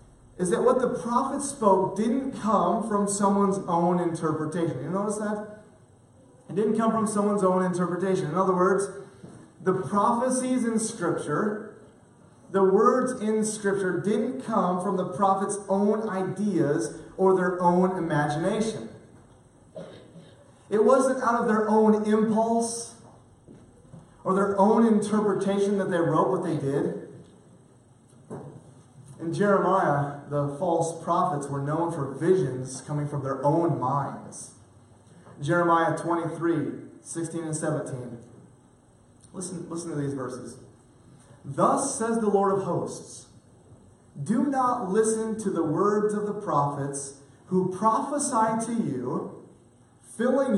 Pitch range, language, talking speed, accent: 150-210 Hz, English, 125 wpm, American